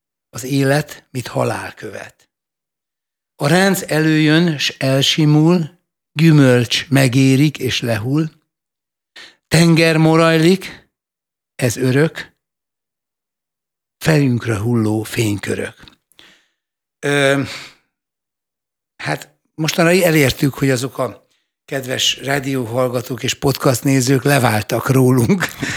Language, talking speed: Hungarian, 80 wpm